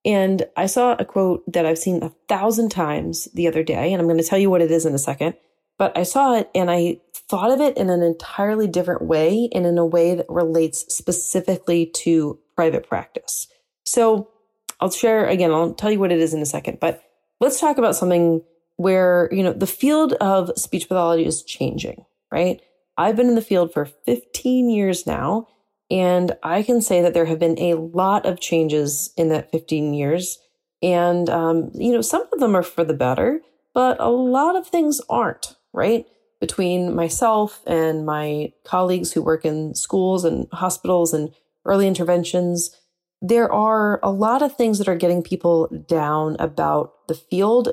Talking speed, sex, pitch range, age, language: 190 wpm, female, 165-210 Hz, 30-49, English